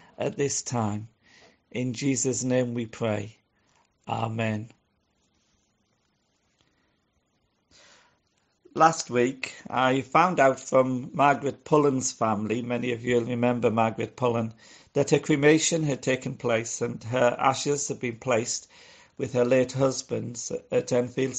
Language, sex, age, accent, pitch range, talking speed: English, male, 50-69, British, 115-135 Hz, 120 wpm